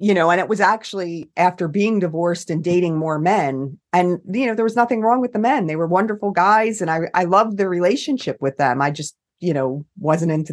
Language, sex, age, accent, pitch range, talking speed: English, female, 40-59, American, 150-190 Hz, 235 wpm